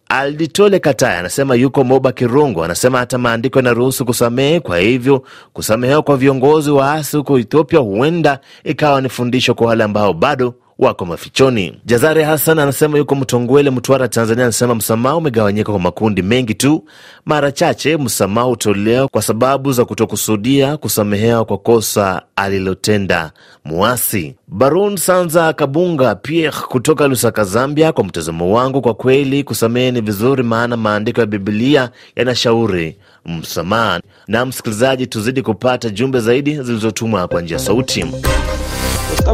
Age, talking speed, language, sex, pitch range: 30-49, 135 wpm, Swahili, male, 120-165 Hz